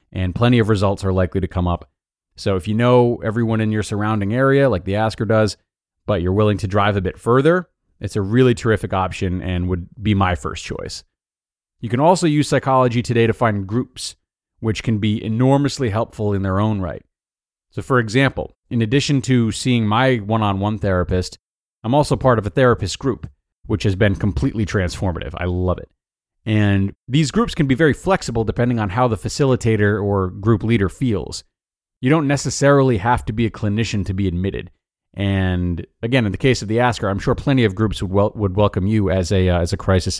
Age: 30-49